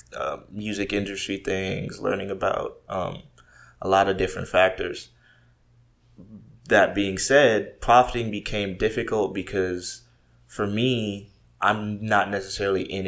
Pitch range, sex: 95-110 Hz, male